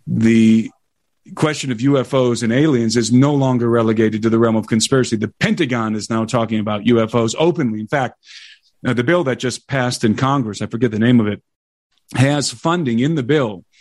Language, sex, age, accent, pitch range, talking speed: English, male, 40-59, American, 110-130 Hz, 185 wpm